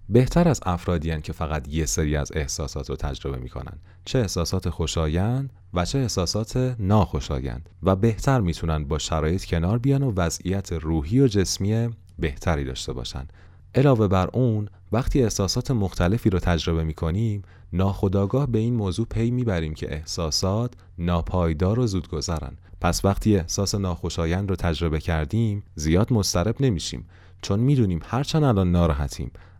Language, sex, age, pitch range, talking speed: Persian, male, 30-49, 85-110 Hz, 145 wpm